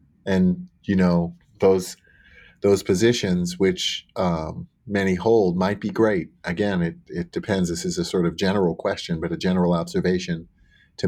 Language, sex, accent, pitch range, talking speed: English, male, American, 90-110 Hz, 155 wpm